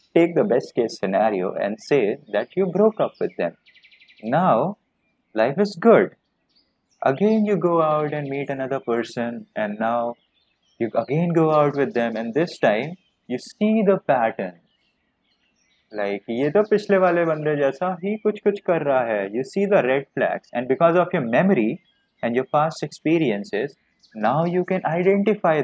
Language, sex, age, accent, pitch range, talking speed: Hindi, male, 20-39, native, 115-170 Hz, 165 wpm